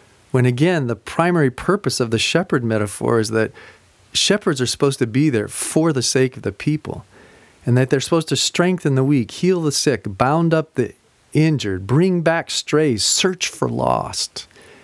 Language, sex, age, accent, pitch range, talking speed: English, male, 40-59, American, 115-155 Hz, 180 wpm